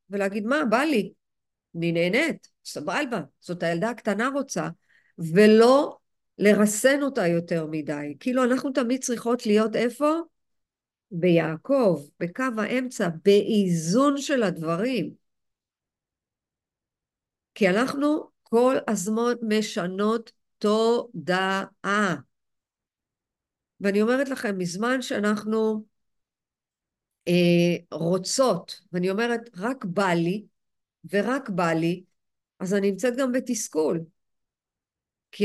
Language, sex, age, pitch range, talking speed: Hebrew, female, 50-69, 180-250 Hz, 90 wpm